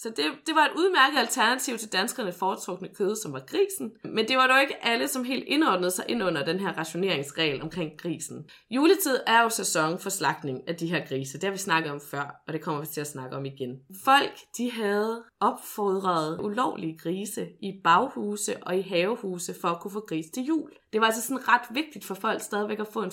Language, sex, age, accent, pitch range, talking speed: Danish, female, 20-39, native, 175-245 Hz, 225 wpm